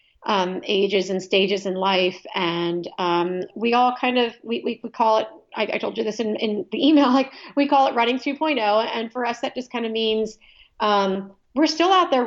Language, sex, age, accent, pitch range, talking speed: English, female, 40-59, American, 190-235 Hz, 220 wpm